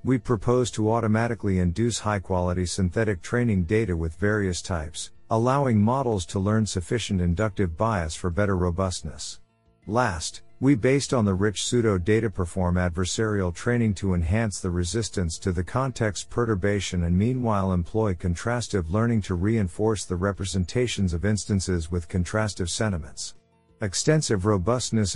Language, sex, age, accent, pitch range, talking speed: English, male, 50-69, American, 90-115 Hz, 135 wpm